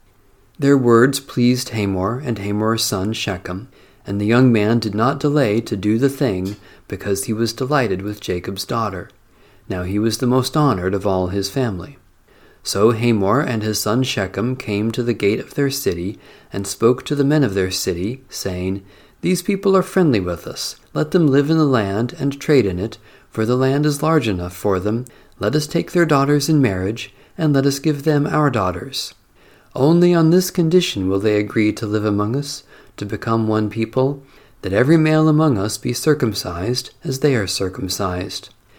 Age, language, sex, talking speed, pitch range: 40-59, English, male, 190 wpm, 100-140 Hz